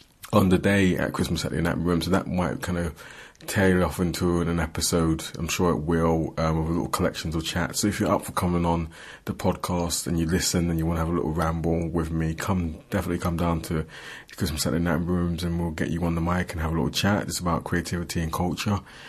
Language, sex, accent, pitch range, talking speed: English, male, British, 85-100 Hz, 235 wpm